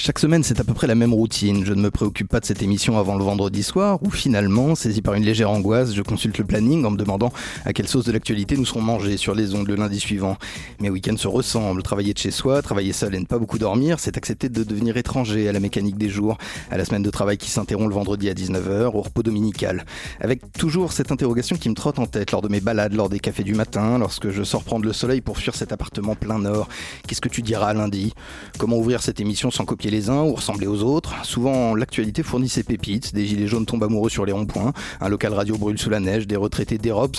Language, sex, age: French, male, 30-49